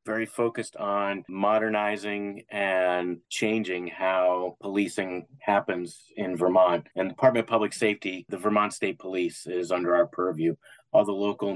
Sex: male